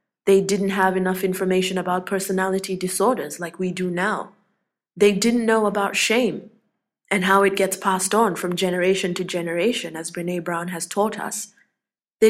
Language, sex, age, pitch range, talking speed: English, female, 20-39, 180-215 Hz, 165 wpm